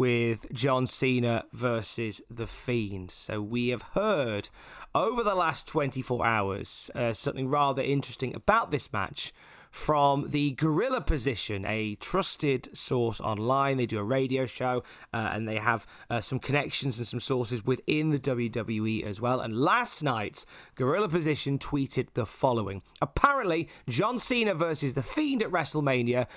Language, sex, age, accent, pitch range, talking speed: English, male, 30-49, British, 120-165 Hz, 150 wpm